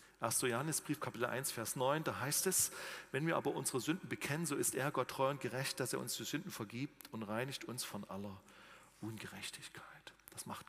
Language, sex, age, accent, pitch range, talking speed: German, male, 40-59, German, 110-160 Hz, 200 wpm